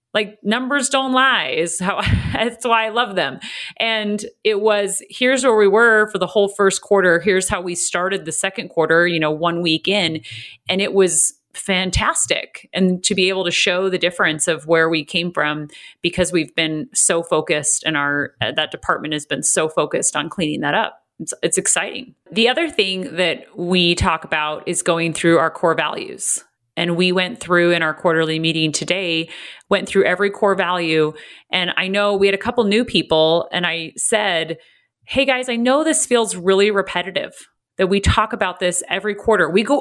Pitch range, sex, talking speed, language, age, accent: 170-220 Hz, female, 195 wpm, English, 30-49, American